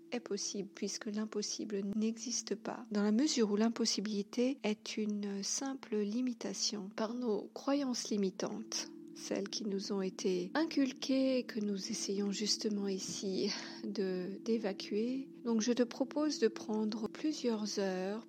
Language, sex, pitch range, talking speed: French, female, 200-230 Hz, 130 wpm